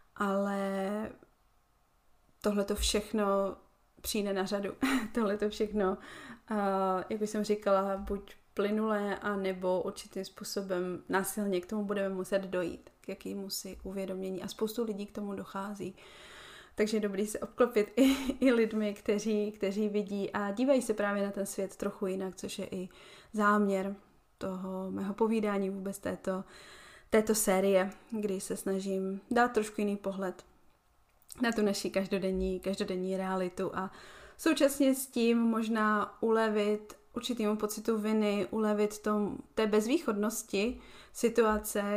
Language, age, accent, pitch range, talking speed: Czech, 20-39, native, 195-220 Hz, 135 wpm